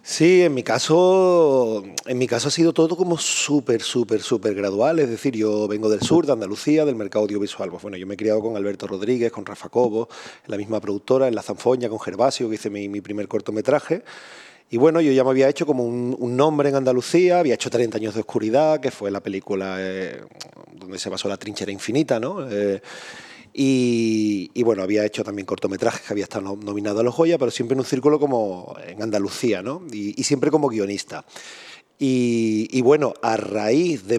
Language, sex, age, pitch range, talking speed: Spanish, male, 30-49, 105-140 Hz, 205 wpm